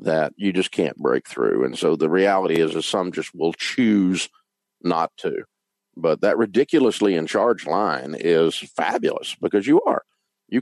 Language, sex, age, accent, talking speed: English, male, 50-69, American, 170 wpm